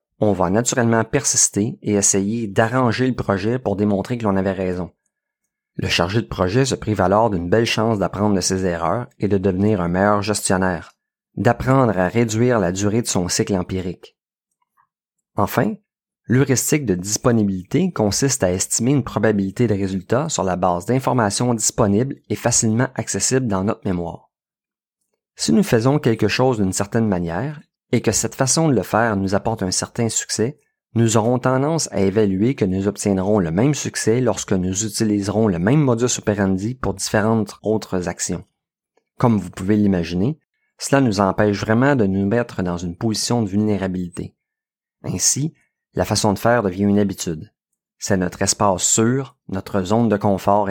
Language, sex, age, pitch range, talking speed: French, male, 30-49, 95-120 Hz, 165 wpm